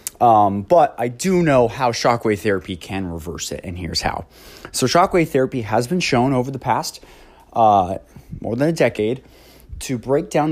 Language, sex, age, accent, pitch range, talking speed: English, male, 20-39, American, 100-130 Hz, 175 wpm